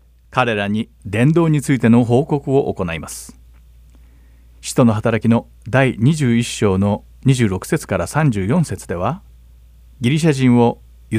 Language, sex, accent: Japanese, male, native